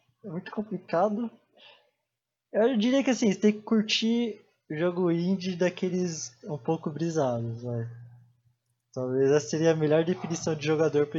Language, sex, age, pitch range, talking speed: English, male, 20-39, 125-175 Hz, 150 wpm